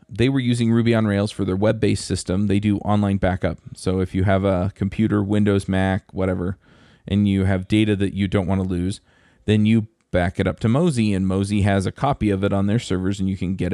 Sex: male